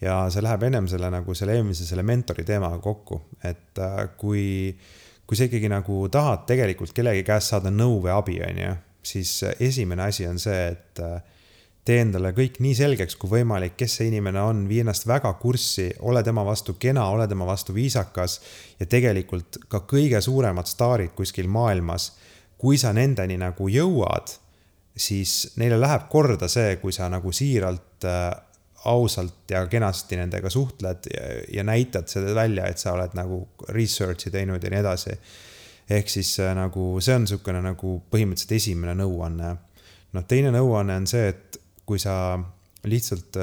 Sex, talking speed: male, 160 wpm